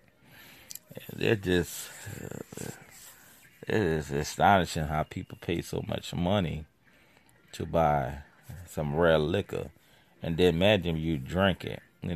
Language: English